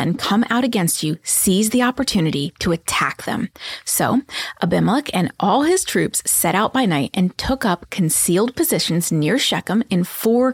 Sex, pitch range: female, 180-255 Hz